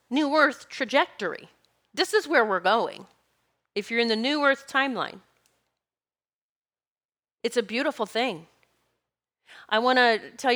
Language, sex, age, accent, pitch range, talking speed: English, female, 30-49, American, 180-255 Hz, 130 wpm